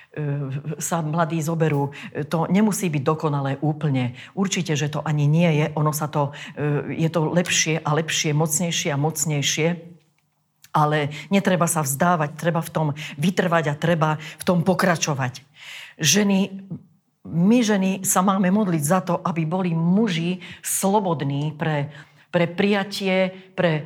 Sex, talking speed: female, 135 wpm